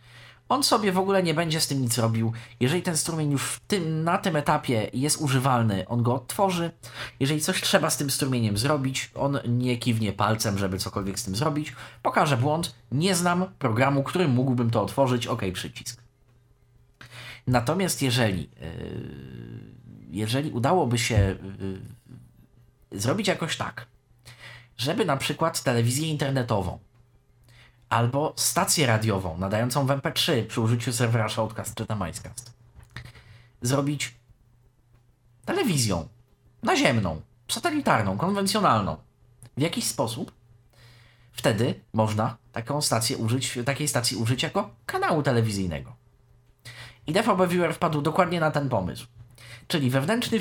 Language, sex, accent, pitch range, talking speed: Polish, male, native, 115-150 Hz, 125 wpm